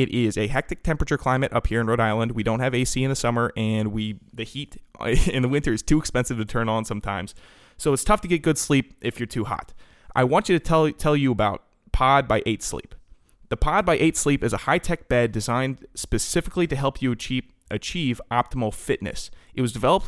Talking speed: 225 wpm